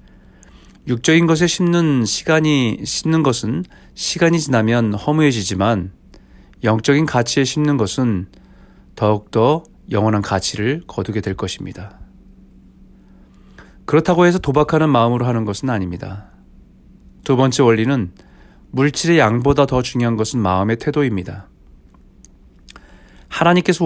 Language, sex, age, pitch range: Korean, male, 40-59, 105-150 Hz